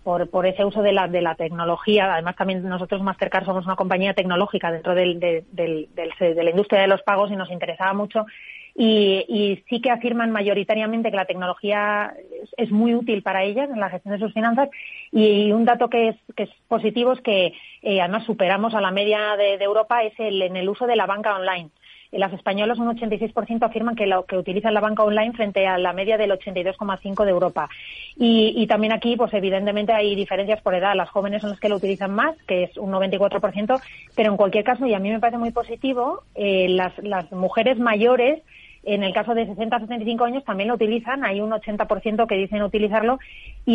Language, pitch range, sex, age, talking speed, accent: Spanish, 190-225 Hz, female, 30-49, 215 wpm, Spanish